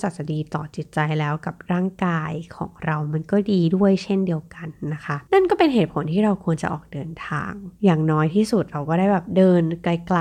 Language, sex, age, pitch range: Thai, female, 20-39, 155-200 Hz